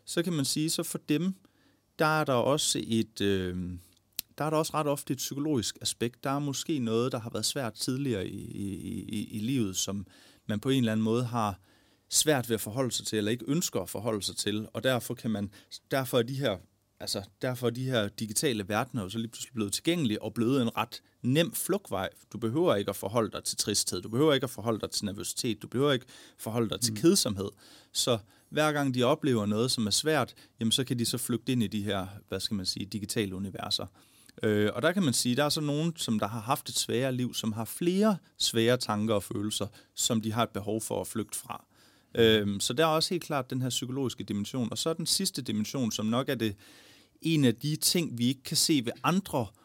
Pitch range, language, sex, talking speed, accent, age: 105-140 Hz, Danish, male, 240 wpm, native, 30-49